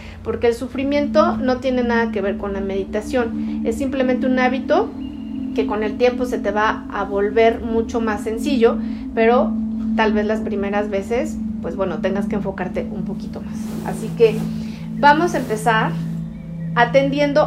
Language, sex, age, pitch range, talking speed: Spanish, female, 40-59, 190-260 Hz, 160 wpm